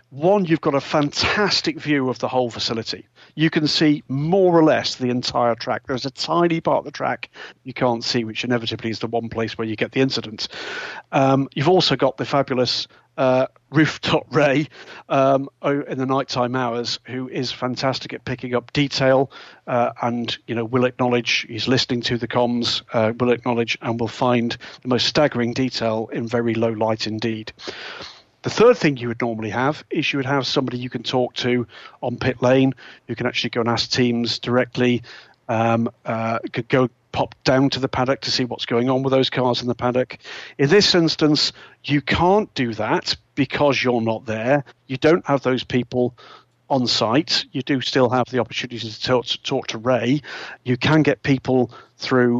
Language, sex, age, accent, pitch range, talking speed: English, male, 40-59, British, 120-135 Hz, 190 wpm